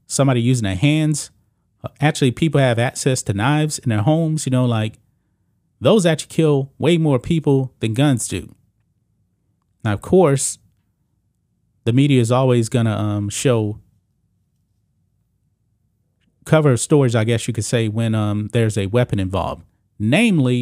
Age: 30-49